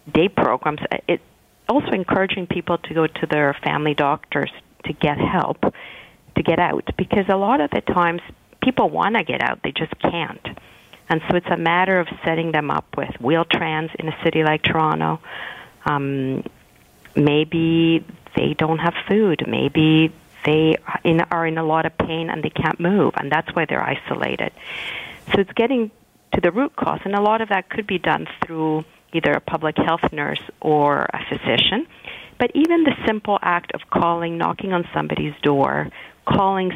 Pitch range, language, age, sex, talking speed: 155-185 Hz, English, 50-69, female, 175 wpm